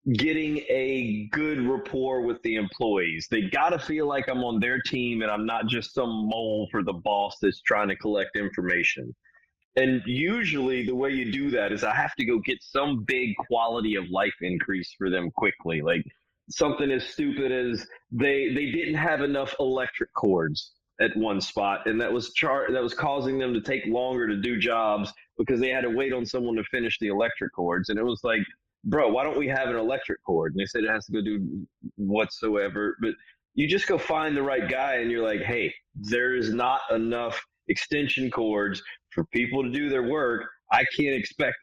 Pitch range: 110-135 Hz